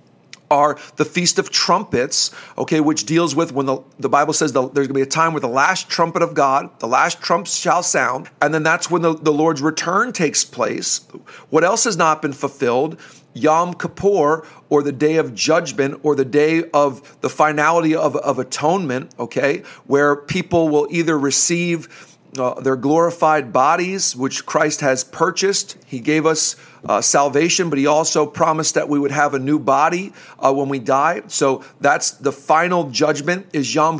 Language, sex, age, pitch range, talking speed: English, male, 40-59, 145-170 Hz, 185 wpm